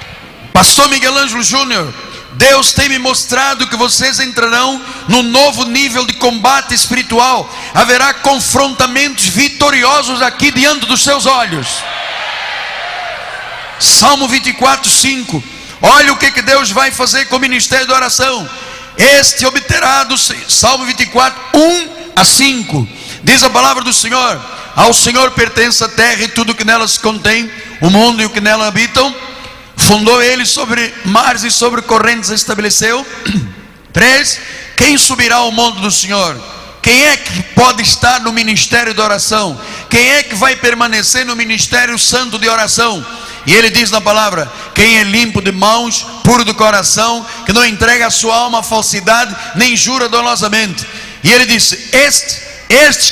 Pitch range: 225-265 Hz